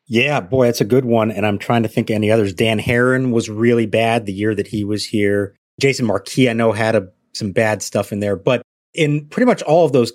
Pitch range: 105-130 Hz